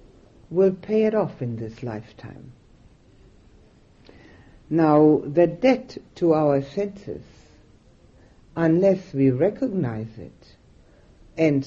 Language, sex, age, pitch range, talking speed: English, female, 60-79, 120-165 Hz, 95 wpm